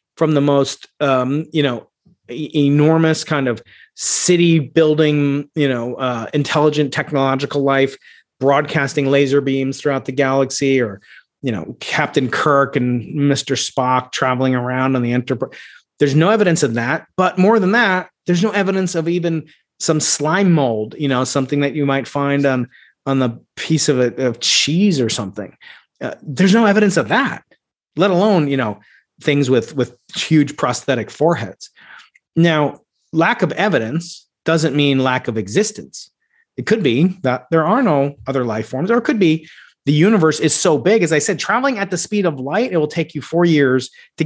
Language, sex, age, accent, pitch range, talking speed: English, male, 30-49, American, 130-165 Hz, 180 wpm